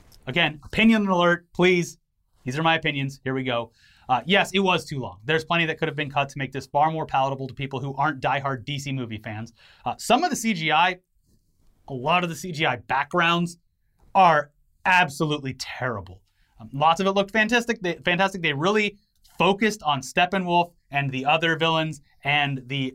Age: 30-49